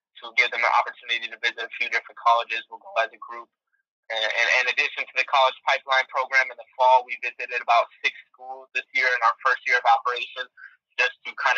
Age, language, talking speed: 20-39, English, 235 wpm